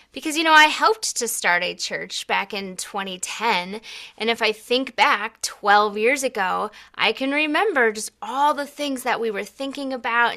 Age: 20-39